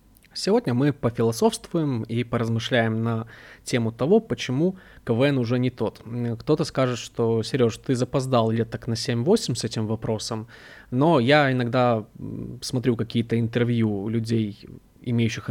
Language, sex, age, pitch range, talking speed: Russian, male, 20-39, 115-145 Hz, 130 wpm